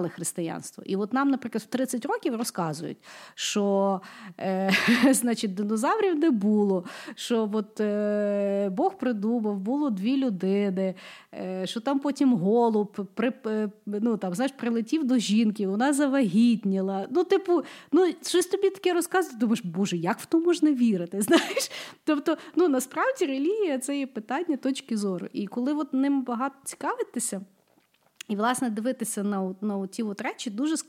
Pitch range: 210-280 Hz